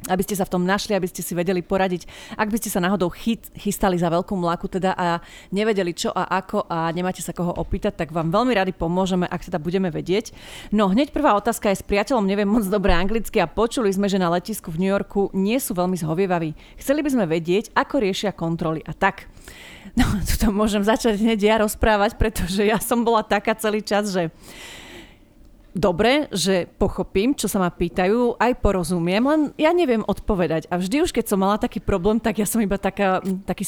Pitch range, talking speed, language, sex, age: 185-220 Hz, 205 wpm, Slovak, female, 30-49